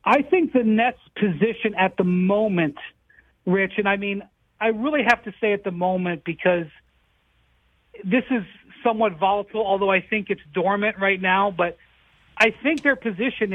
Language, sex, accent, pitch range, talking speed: English, male, American, 185-230 Hz, 165 wpm